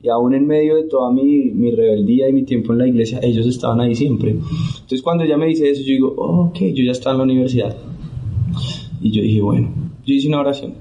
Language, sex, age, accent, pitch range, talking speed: Spanish, male, 20-39, Colombian, 115-150 Hz, 240 wpm